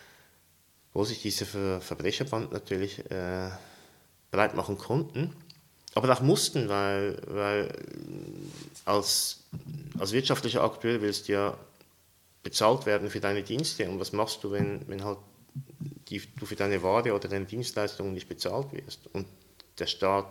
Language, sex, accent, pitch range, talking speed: German, male, German, 95-115 Hz, 140 wpm